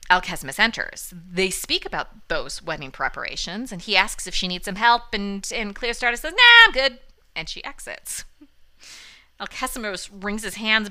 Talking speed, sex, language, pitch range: 165 wpm, female, English, 165-230 Hz